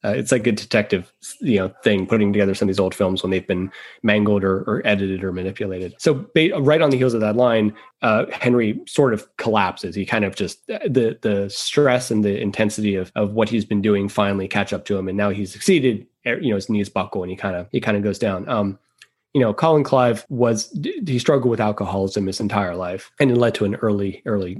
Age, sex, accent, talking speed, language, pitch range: 20-39, male, American, 235 wpm, English, 100-125 Hz